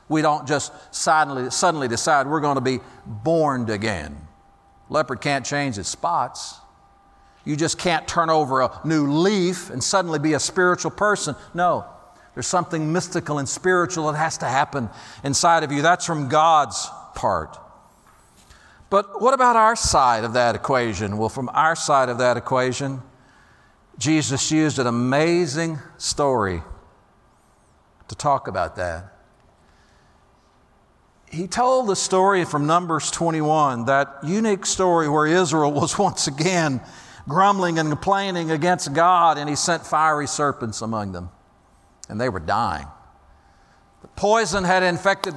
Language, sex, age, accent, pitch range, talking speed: English, male, 50-69, American, 125-180 Hz, 140 wpm